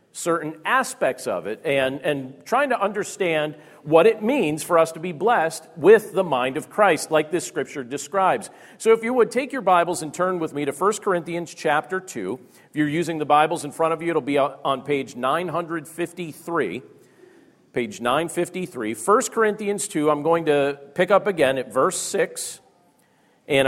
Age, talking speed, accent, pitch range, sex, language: 50-69, 180 wpm, American, 145-190 Hz, male, English